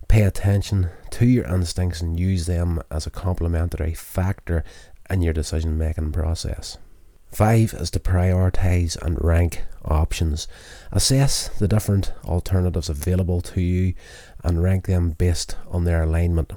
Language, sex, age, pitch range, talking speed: English, male, 30-49, 80-95 Hz, 135 wpm